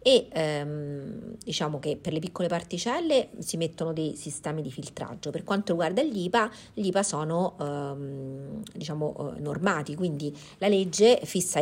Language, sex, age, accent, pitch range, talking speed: Italian, female, 40-59, native, 150-185 Hz, 145 wpm